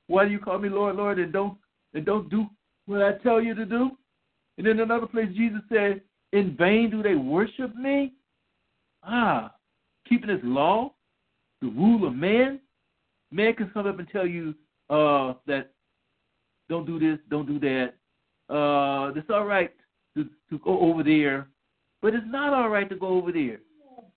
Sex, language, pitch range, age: male, English, 155-240 Hz, 60-79